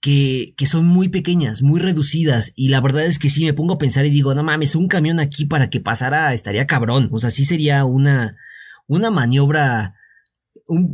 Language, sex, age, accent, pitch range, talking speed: Spanish, male, 30-49, Mexican, 125-170 Hz, 205 wpm